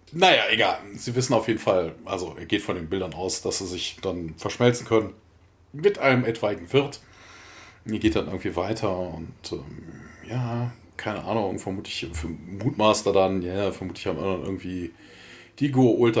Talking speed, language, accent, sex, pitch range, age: 175 wpm, German, German, male, 90-115 Hz, 40-59